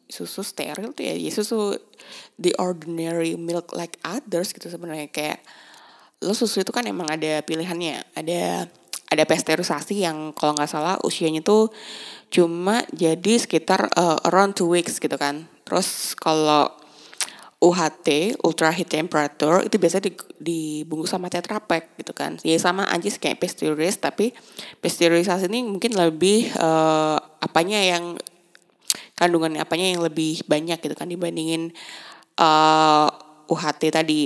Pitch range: 155-180 Hz